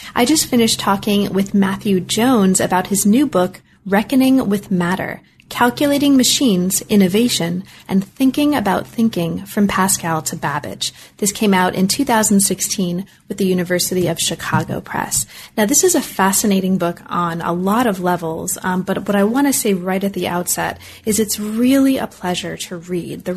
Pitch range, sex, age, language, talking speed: 180-220 Hz, female, 30-49, English, 170 wpm